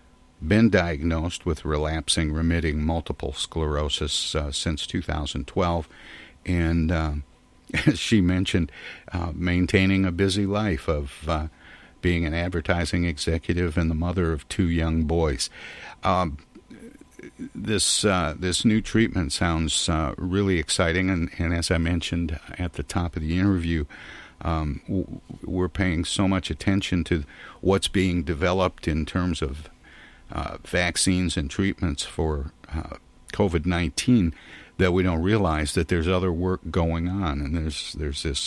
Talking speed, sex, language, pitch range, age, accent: 135 wpm, male, English, 80-90 Hz, 60-79, American